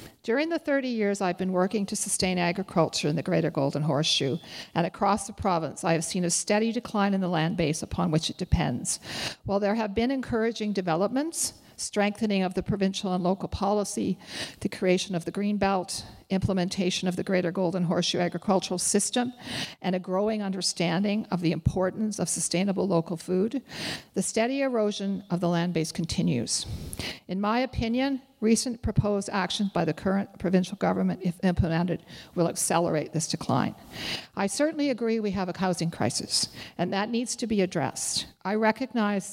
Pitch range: 175-215 Hz